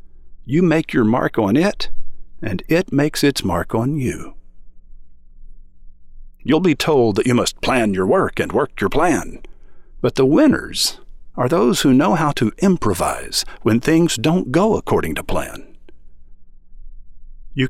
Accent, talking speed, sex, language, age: American, 150 wpm, male, English, 50-69